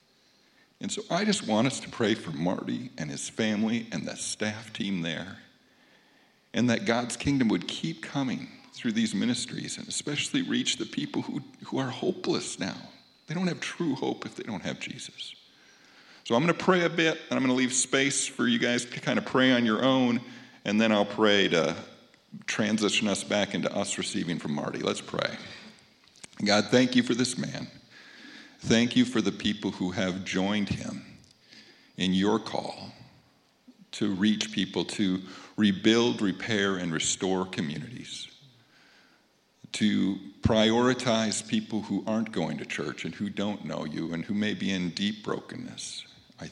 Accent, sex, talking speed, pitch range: American, male, 170 wpm, 100-130 Hz